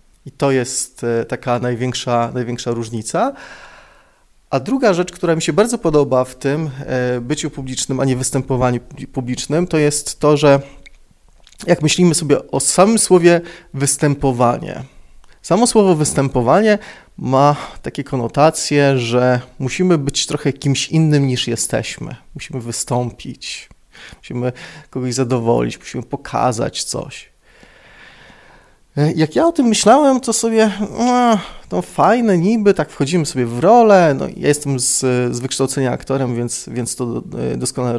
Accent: native